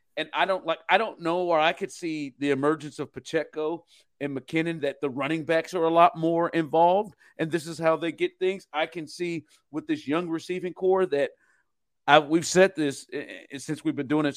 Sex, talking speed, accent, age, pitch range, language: male, 215 wpm, American, 50-69, 140-175 Hz, English